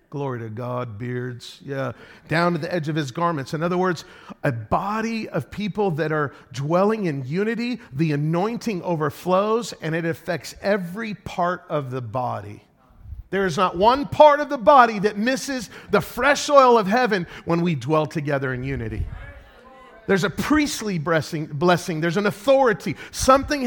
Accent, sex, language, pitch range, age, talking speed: American, male, English, 160-225 Hz, 40-59, 160 wpm